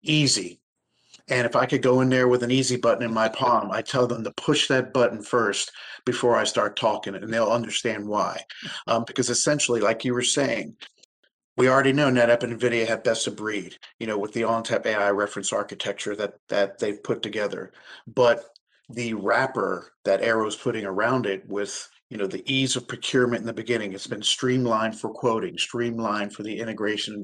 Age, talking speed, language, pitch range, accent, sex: 40-59, 200 wpm, English, 110-125 Hz, American, male